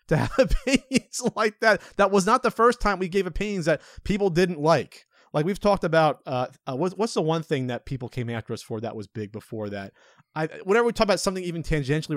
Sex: male